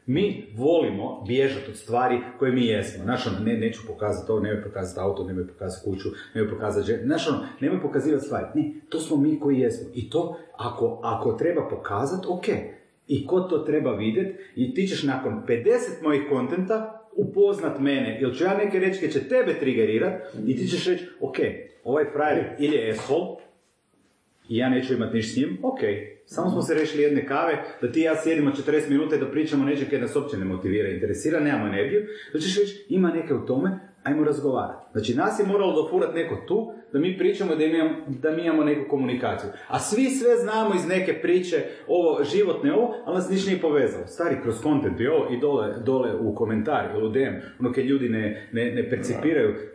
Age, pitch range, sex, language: 40-59, 120-185 Hz, male, Croatian